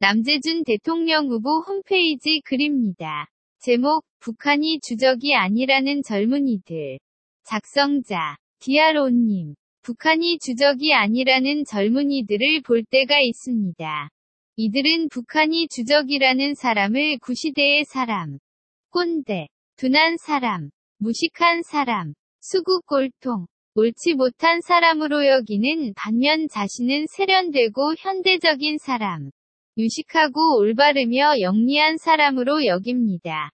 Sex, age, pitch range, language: female, 20-39, 225-305 Hz, Korean